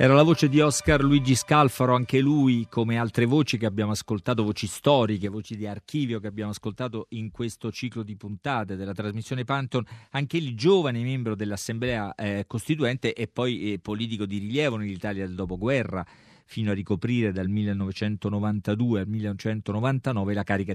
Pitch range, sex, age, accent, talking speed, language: 105-130 Hz, male, 40-59, native, 160 wpm, Italian